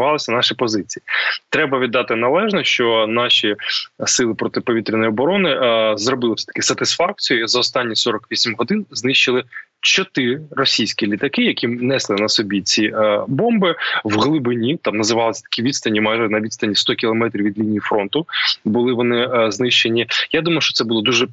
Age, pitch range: 20-39, 110-140 Hz